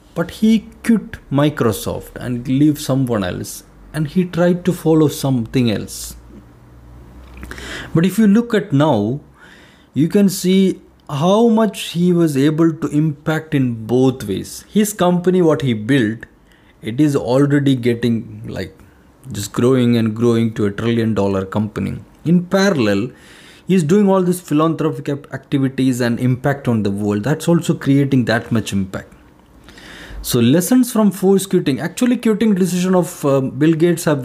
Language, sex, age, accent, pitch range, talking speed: English, male, 20-39, Indian, 110-165 Hz, 145 wpm